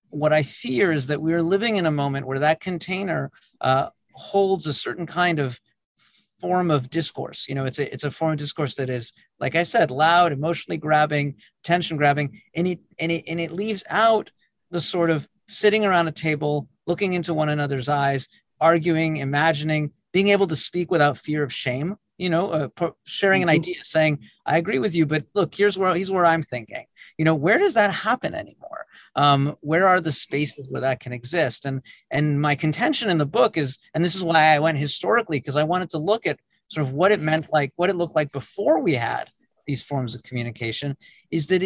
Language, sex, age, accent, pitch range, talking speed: English, male, 40-59, American, 145-180 Hz, 210 wpm